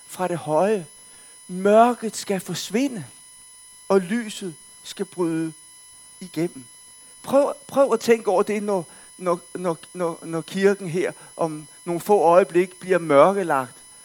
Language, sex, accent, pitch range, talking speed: Danish, male, native, 165-255 Hz, 125 wpm